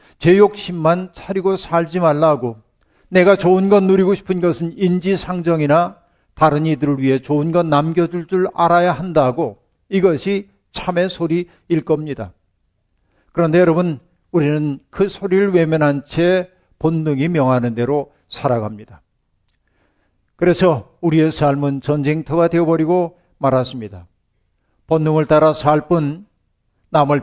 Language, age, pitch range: Korean, 50-69, 135-175 Hz